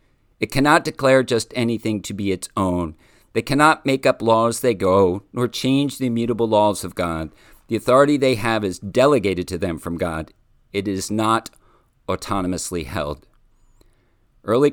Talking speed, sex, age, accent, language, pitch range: 160 wpm, male, 50-69, American, English, 95-130 Hz